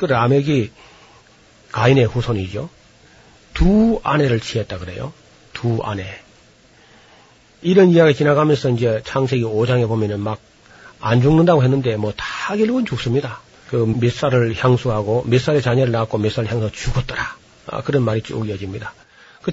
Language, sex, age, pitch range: Korean, male, 40-59, 110-145 Hz